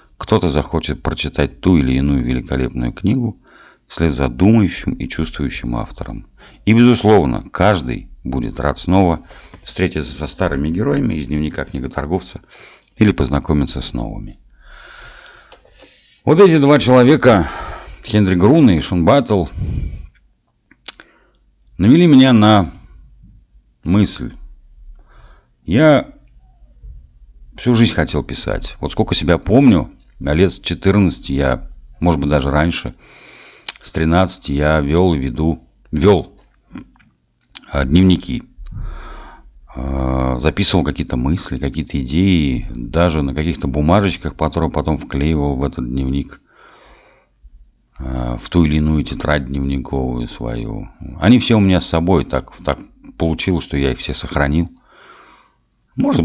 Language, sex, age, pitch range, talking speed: Russian, male, 50-69, 65-90 Hz, 110 wpm